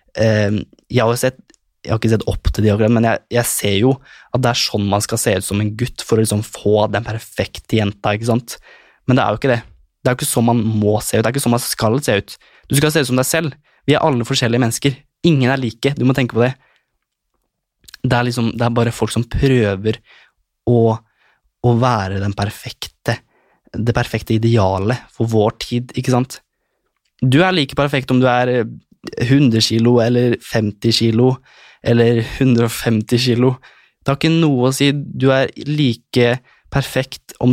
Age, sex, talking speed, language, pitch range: 20-39, male, 190 wpm, English, 110-125 Hz